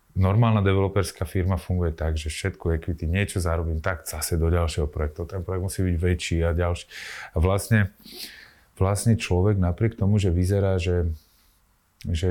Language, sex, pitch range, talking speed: Slovak, male, 80-95 Hz, 150 wpm